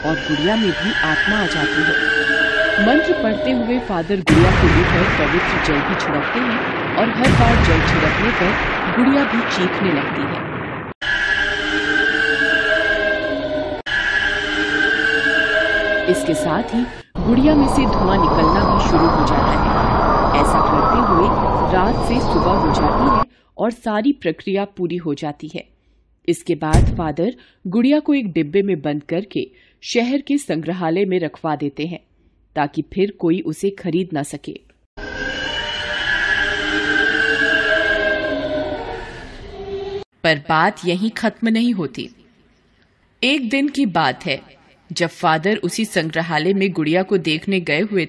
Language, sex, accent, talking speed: Hindi, female, native, 130 wpm